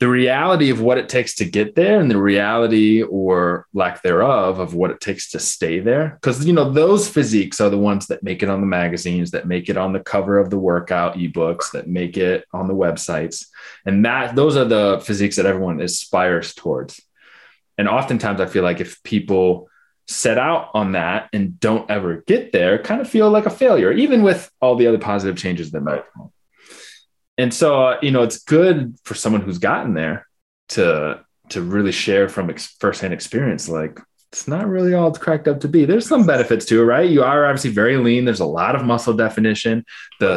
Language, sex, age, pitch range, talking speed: English, male, 20-39, 90-130 Hz, 210 wpm